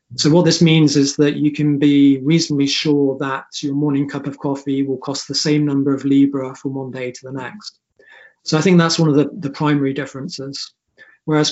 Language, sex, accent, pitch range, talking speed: English, male, British, 135-160 Hz, 215 wpm